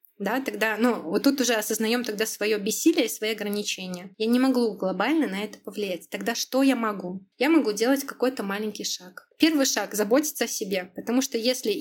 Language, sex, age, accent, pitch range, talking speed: Russian, female, 20-39, native, 205-265 Hz, 200 wpm